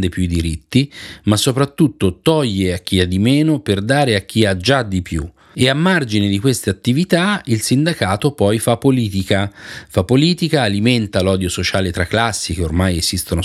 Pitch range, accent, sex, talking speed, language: 90-115 Hz, native, male, 180 wpm, Italian